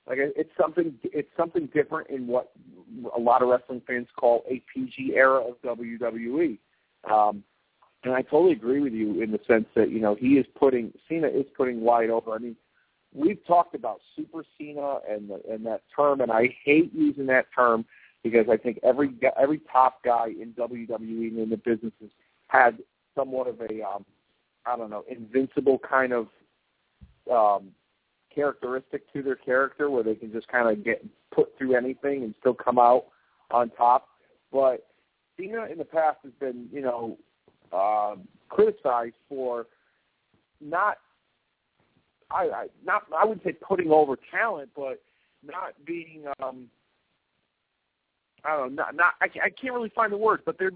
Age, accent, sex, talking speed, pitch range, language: 40-59, American, male, 170 wpm, 115-155 Hz, English